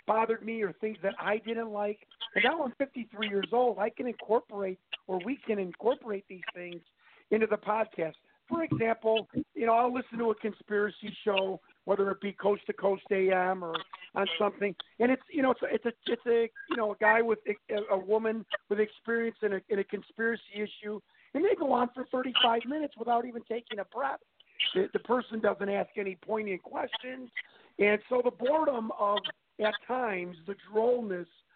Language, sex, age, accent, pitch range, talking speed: English, male, 50-69, American, 200-240 Hz, 190 wpm